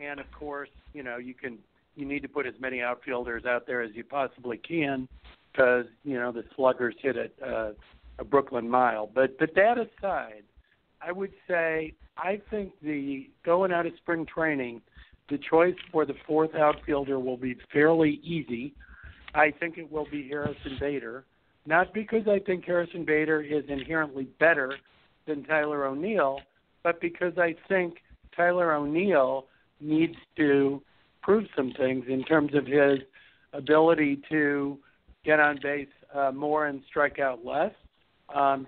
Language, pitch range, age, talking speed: English, 135-155 Hz, 60-79, 160 wpm